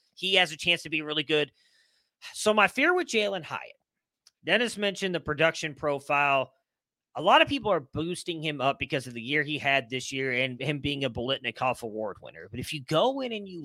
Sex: male